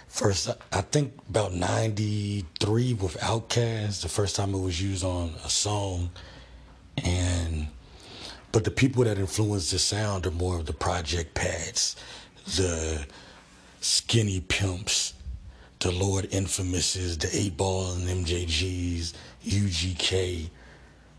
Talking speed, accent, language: 115 wpm, American, English